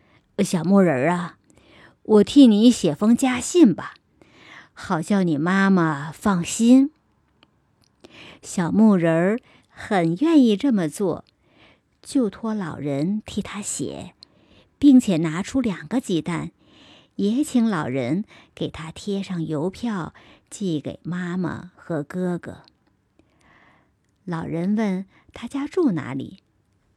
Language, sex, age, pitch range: Chinese, male, 50-69, 175-245 Hz